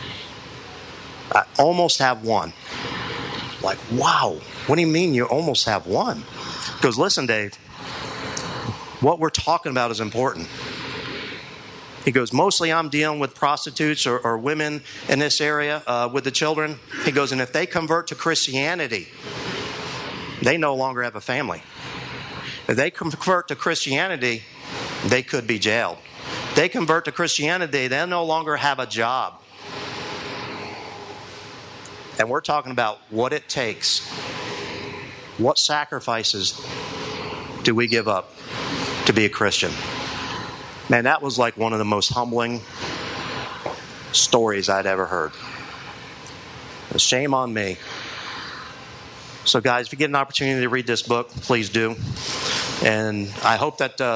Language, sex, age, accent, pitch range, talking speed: English, male, 50-69, American, 115-145 Hz, 140 wpm